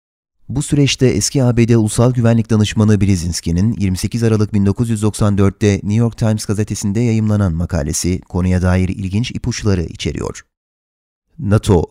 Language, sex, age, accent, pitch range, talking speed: Turkish, male, 30-49, native, 95-115 Hz, 115 wpm